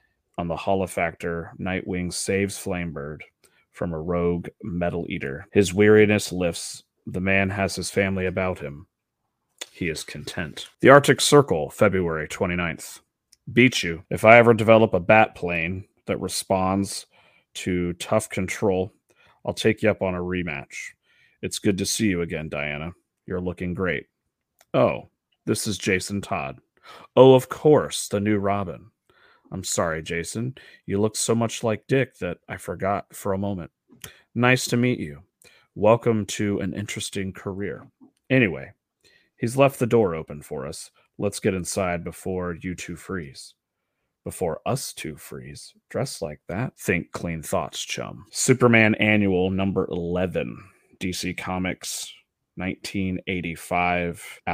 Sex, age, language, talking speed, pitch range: male, 30-49, English, 140 wpm, 85-105 Hz